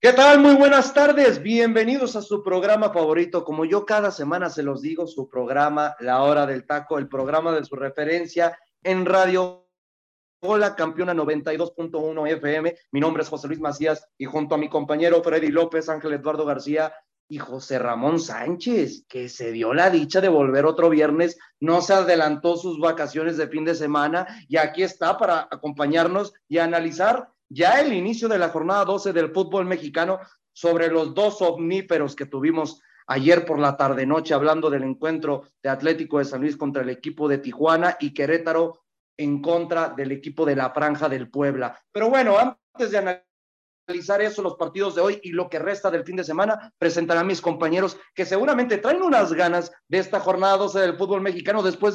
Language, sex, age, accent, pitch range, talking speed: Spanish, male, 30-49, Mexican, 155-195 Hz, 185 wpm